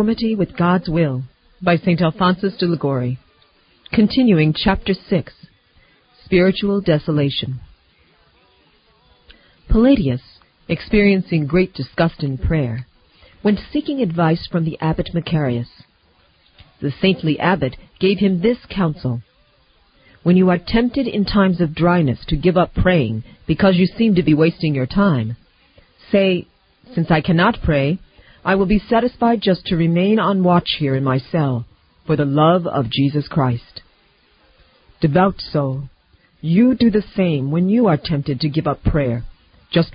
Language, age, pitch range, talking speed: English, 40-59, 135-195 Hz, 140 wpm